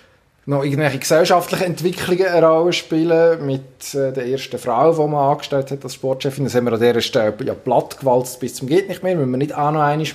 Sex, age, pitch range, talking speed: male, 20-39, 120-140 Hz, 205 wpm